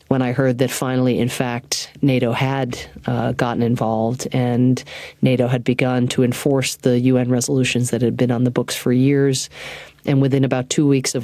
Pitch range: 120-130 Hz